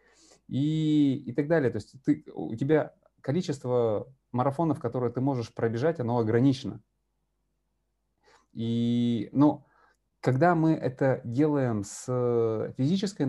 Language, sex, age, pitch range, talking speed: Russian, male, 30-49, 115-145 Hz, 115 wpm